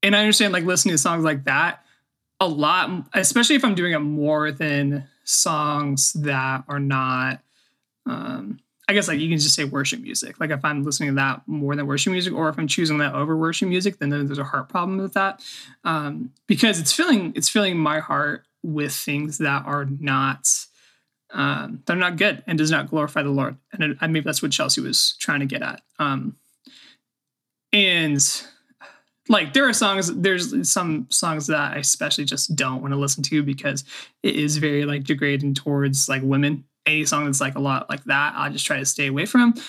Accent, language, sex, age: American, English, male, 20-39